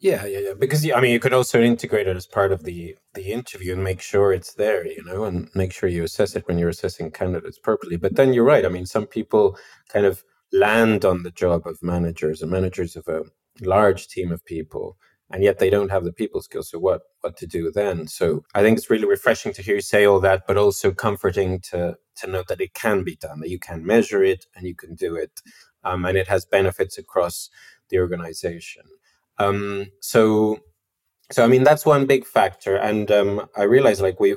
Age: 30-49